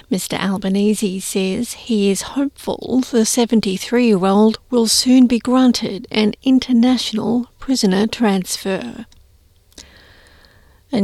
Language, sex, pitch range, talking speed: English, female, 205-240 Hz, 90 wpm